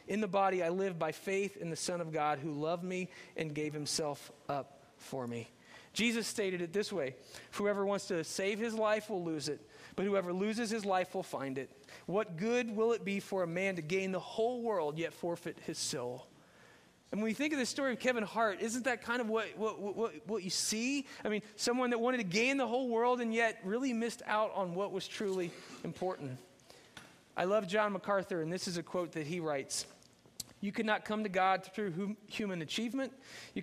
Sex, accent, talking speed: male, American, 215 wpm